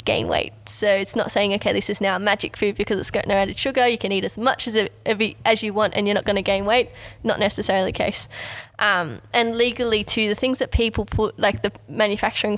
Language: English